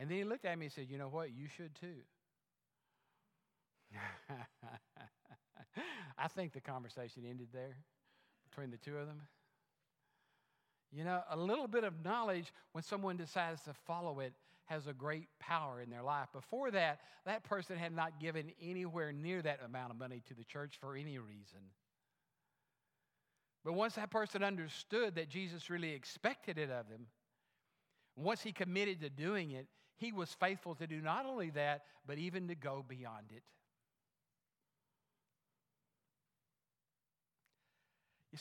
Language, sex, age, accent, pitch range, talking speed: English, male, 50-69, American, 135-180 Hz, 150 wpm